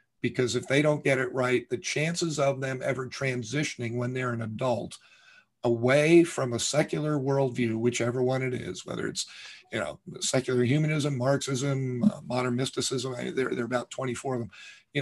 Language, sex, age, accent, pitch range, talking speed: English, male, 50-69, American, 125-145 Hz, 170 wpm